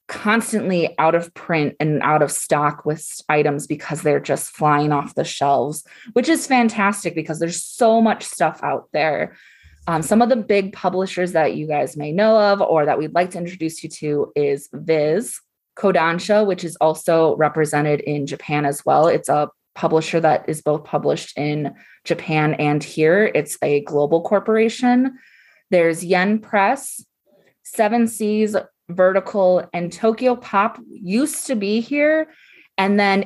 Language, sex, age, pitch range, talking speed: English, female, 20-39, 150-200 Hz, 160 wpm